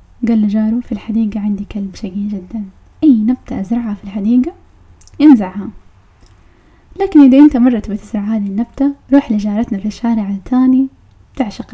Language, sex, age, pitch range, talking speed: Arabic, female, 10-29, 195-235 Hz, 140 wpm